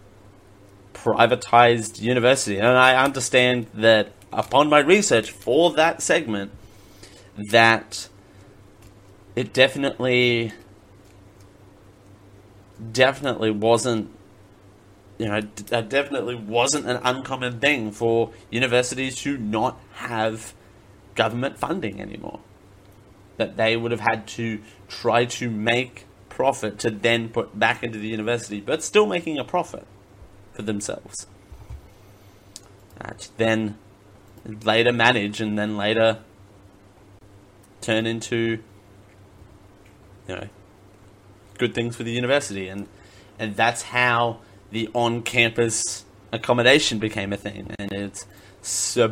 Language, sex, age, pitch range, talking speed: English, male, 30-49, 100-120 Hz, 105 wpm